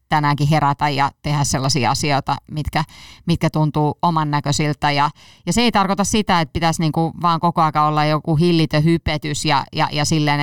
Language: Finnish